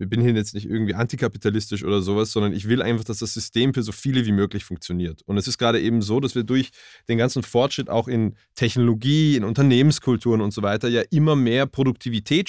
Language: German